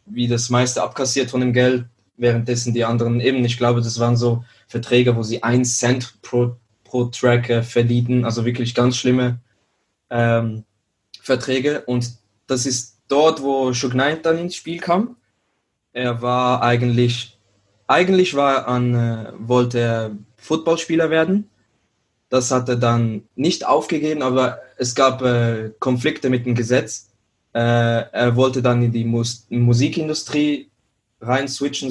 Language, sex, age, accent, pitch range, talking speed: German, male, 20-39, German, 115-130 Hz, 145 wpm